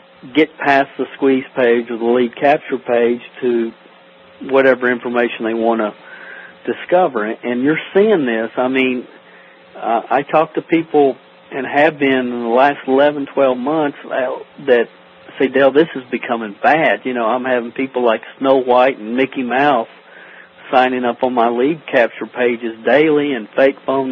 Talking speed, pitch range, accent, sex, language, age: 165 wpm, 115-135 Hz, American, male, English, 50-69